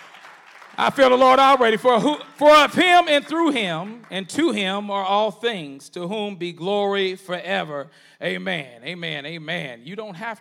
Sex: male